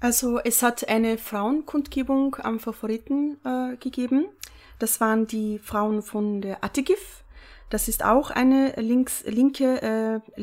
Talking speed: 130 wpm